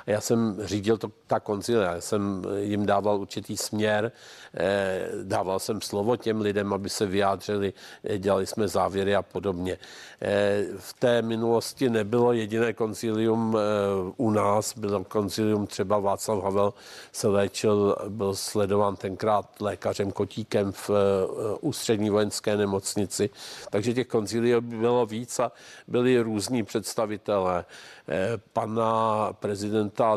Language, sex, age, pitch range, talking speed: Czech, male, 50-69, 100-115 Hz, 120 wpm